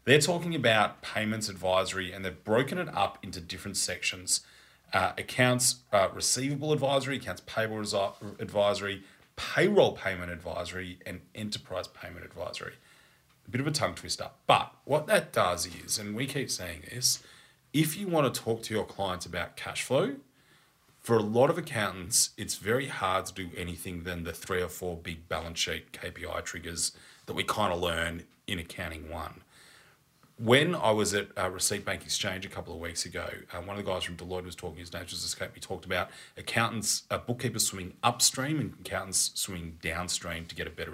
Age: 30-49